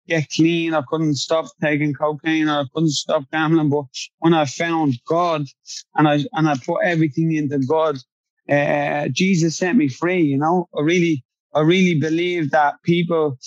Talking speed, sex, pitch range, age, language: 175 wpm, male, 150-170 Hz, 20-39, English